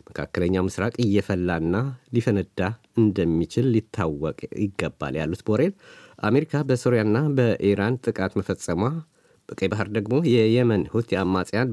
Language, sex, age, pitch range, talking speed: Amharic, male, 50-69, 95-120 Hz, 100 wpm